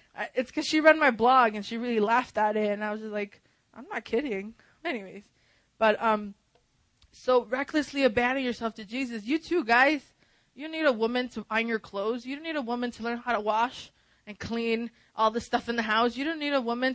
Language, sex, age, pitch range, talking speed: English, female, 20-39, 215-270 Hz, 225 wpm